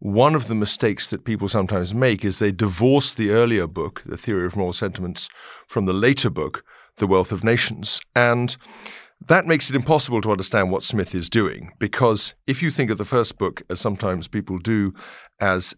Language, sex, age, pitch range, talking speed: English, male, 50-69, 95-120 Hz, 195 wpm